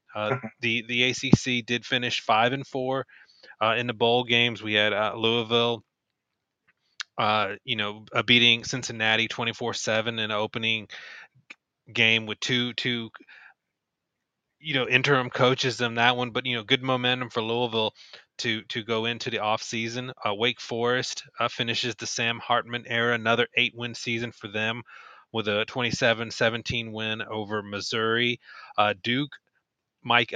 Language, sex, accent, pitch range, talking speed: English, male, American, 110-125 Hz, 150 wpm